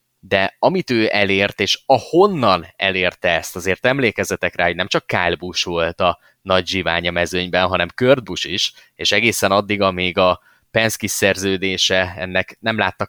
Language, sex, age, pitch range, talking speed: Hungarian, male, 20-39, 90-105 Hz, 165 wpm